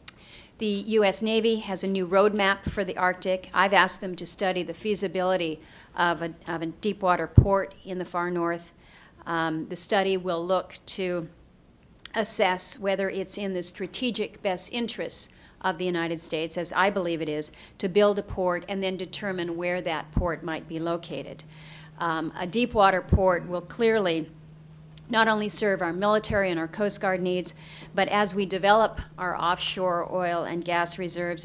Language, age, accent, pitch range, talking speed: English, 40-59, American, 165-195 Hz, 175 wpm